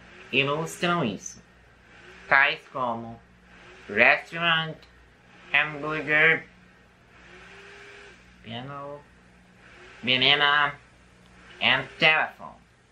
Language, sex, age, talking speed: Portuguese, male, 30-49, 45 wpm